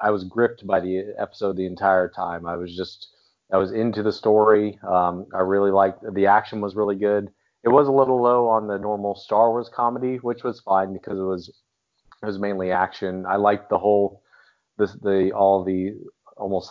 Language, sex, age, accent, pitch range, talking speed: English, male, 30-49, American, 95-105 Hz, 200 wpm